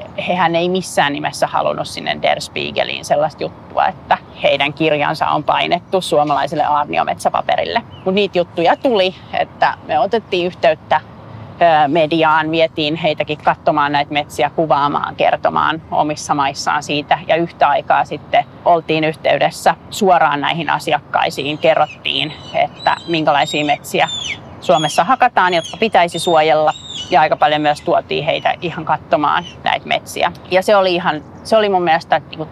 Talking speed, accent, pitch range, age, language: 135 wpm, native, 155-195 Hz, 30-49, Finnish